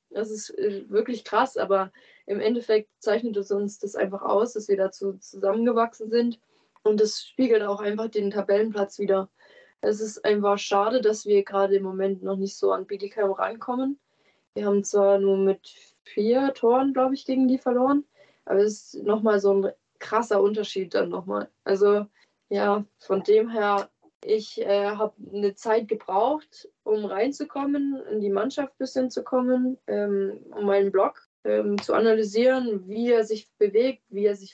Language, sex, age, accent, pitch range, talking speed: German, female, 20-39, German, 195-230 Hz, 170 wpm